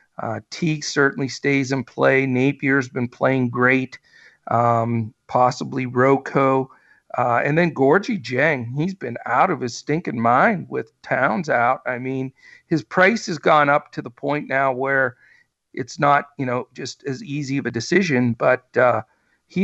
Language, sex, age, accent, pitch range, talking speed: English, male, 50-69, American, 120-145 Hz, 160 wpm